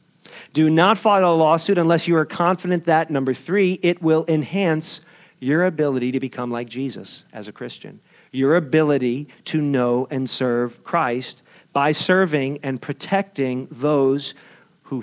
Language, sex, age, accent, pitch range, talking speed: English, male, 50-69, American, 130-180 Hz, 150 wpm